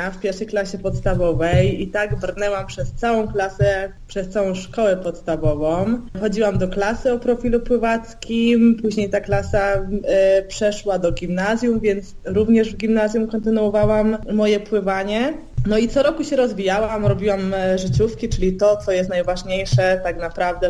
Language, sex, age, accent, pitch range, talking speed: Polish, female, 20-39, native, 185-225 Hz, 140 wpm